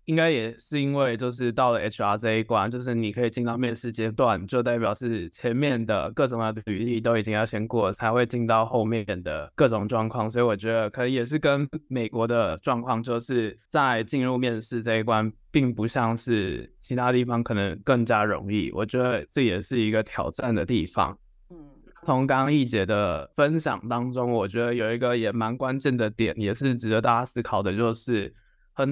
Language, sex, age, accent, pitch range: Chinese, male, 20-39, native, 110-130 Hz